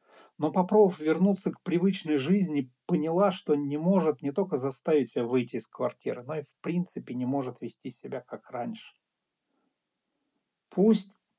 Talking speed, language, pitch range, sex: 150 wpm, Russian, 130-175 Hz, male